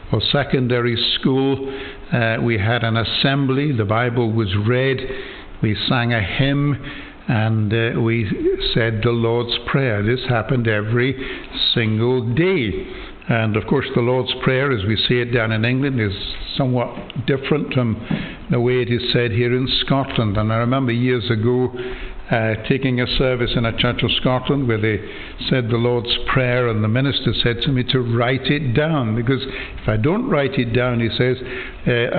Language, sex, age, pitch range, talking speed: English, male, 60-79, 115-135 Hz, 175 wpm